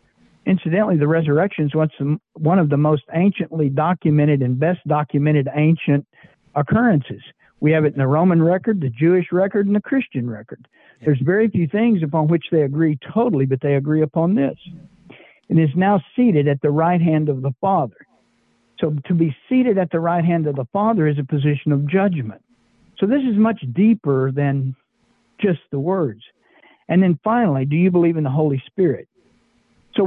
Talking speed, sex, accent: 180 wpm, male, American